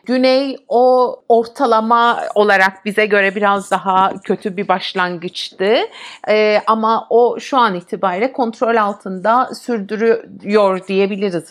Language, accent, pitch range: Turkish, native, 190-280 Hz